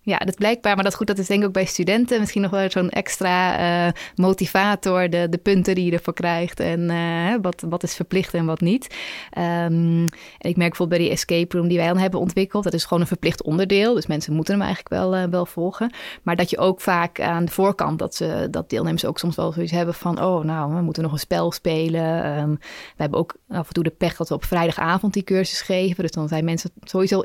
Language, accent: Dutch, Dutch